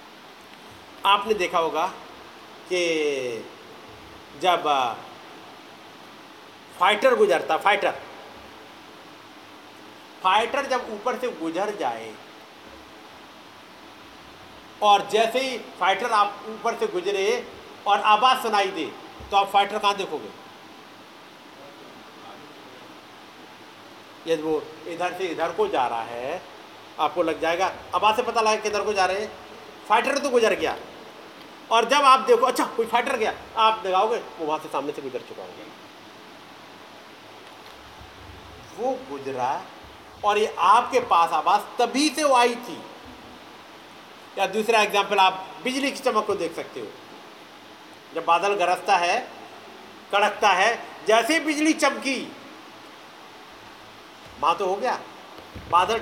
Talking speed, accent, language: 120 wpm, native, Hindi